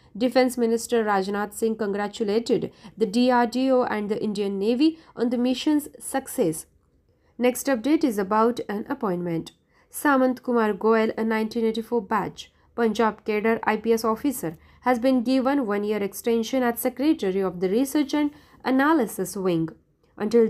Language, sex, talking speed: Marathi, female, 135 wpm